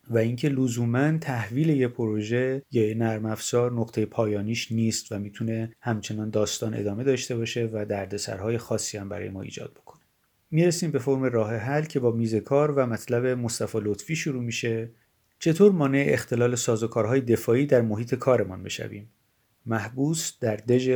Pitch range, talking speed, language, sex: 115-140 Hz, 150 wpm, Persian, male